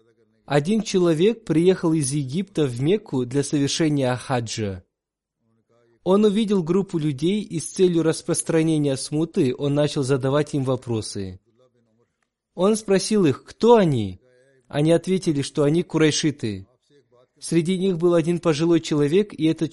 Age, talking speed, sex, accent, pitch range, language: 20-39, 130 wpm, male, native, 125-170 Hz, Russian